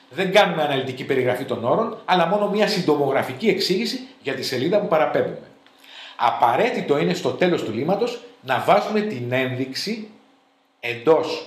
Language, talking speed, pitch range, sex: Greek, 140 wpm, 125-210 Hz, male